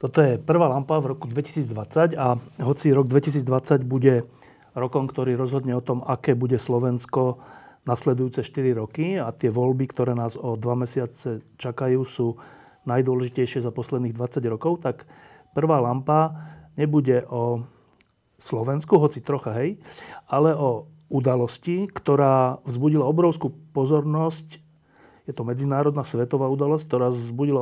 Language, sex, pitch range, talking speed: Slovak, male, 125-150 Hz, 135 wpm